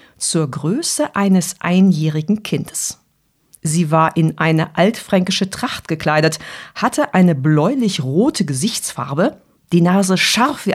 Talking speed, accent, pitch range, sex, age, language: 110 wpm, German, 160-210 Hz, female, 50-69, German